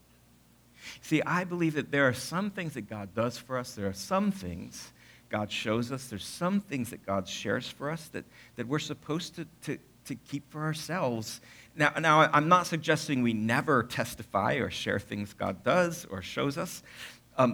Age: 50-69